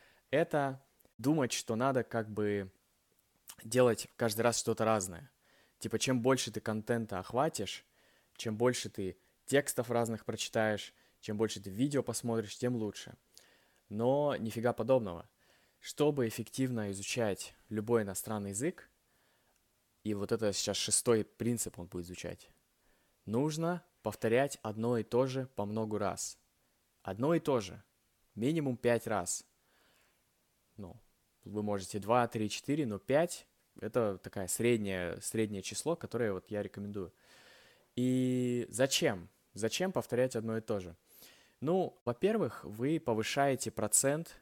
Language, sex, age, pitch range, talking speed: Russian, male, 20-39, 105-130 Hz, 125 wpm